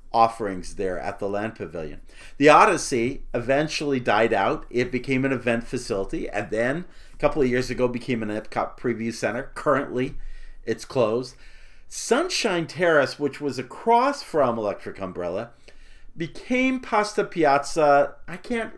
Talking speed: 140 wpm